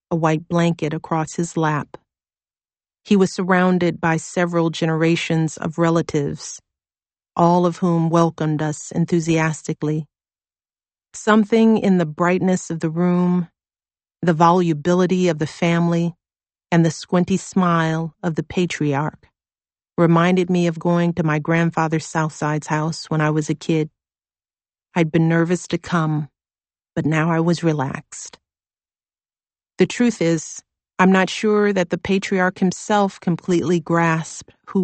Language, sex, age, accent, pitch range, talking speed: English, female, 40-59, American, 155-175 Hz, 130 wpm